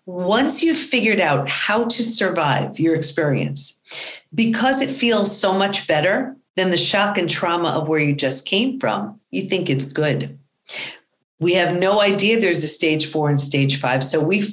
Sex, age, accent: female, 40-59, American